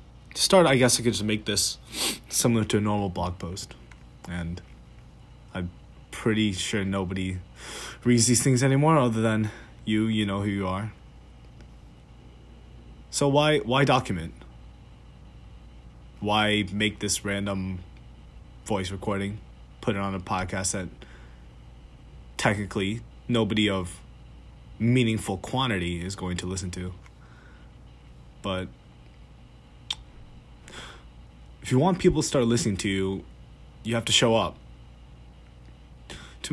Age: 20-39